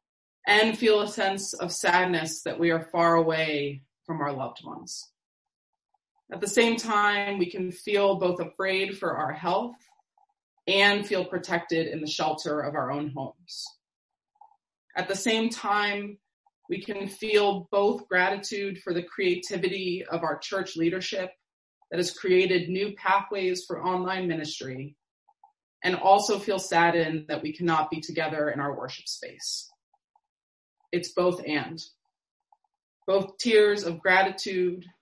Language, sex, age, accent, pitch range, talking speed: English, female, 20-39, American, 170-230 Hz, 140 wpm